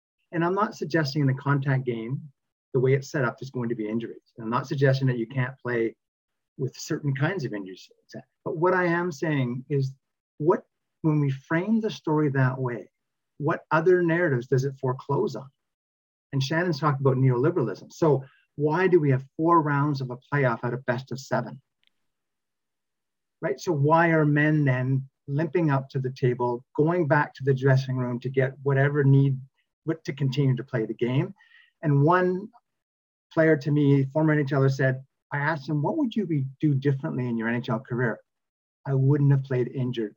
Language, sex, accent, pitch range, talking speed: English, male, American, 125-155 Hz, 185 wpm